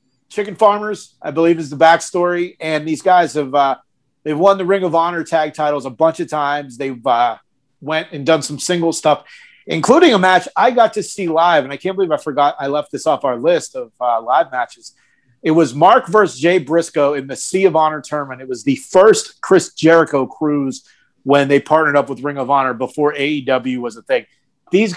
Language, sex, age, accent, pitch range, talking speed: English, male, 30-49, American, 135-180 Hz, 215 wpm